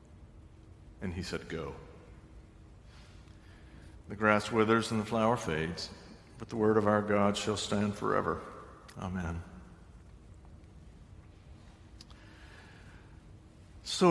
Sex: male